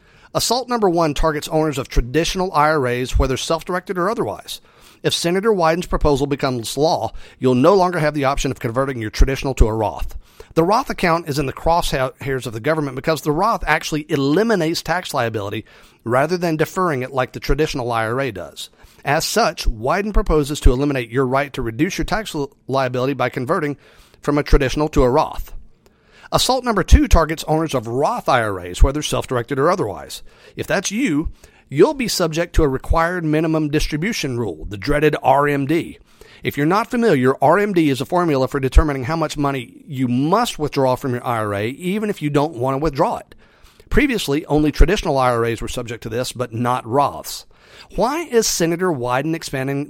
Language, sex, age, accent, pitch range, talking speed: English, male, 40-59, American, 130-165 Hz, 180 wpm